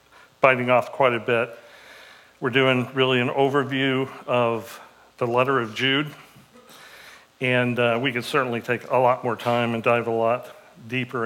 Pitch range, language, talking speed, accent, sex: 115-135 Hz, English, 160 wpm, American, male